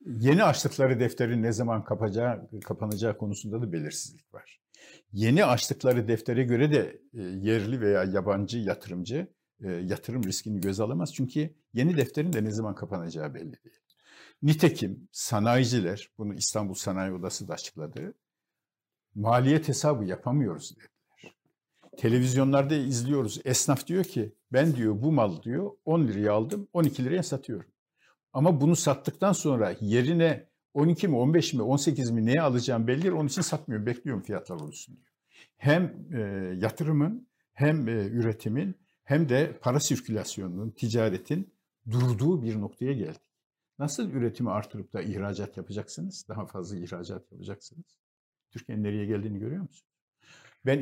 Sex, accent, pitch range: male, native, 105-150 Hz